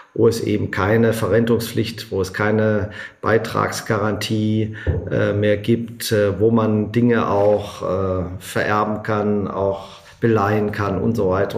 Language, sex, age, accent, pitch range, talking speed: German, male, 40-59, German, 100-115 Hz, 135 wpm